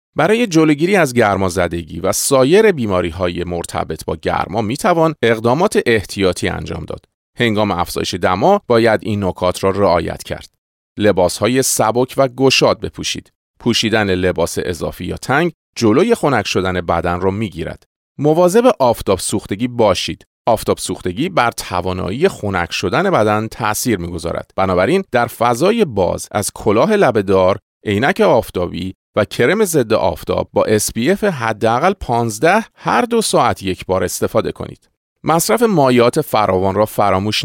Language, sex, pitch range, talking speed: Persian, male, 95-150 Hz, 135 wpm